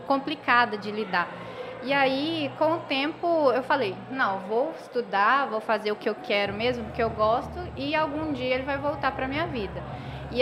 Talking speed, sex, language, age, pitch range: 195 wpm, female, Portuguese, 20-39, 230-280 Hz